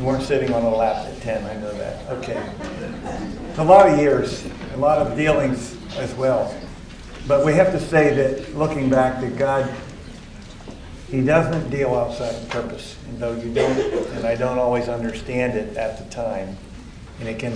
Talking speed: 190 wpm